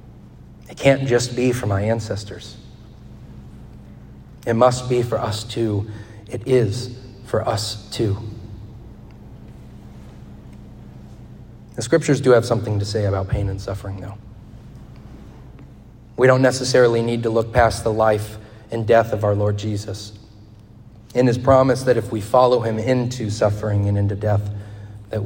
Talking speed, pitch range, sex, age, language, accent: 140 wpm, 105-125 Hz, male, 30-49, English, American